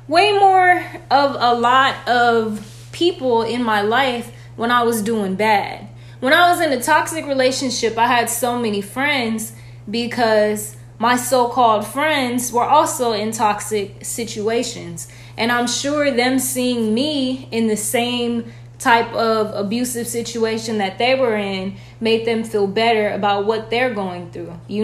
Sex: female